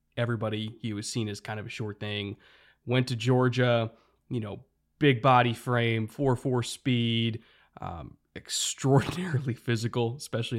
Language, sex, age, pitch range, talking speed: English, male, 20-39, 110-125 Hz, 135 wpm